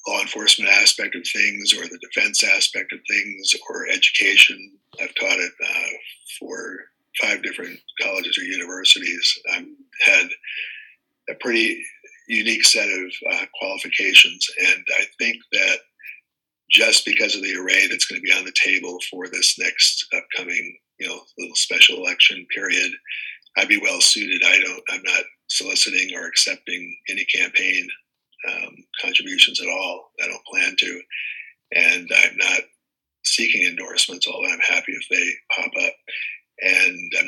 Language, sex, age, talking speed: English, male, 50-69, 150 wpm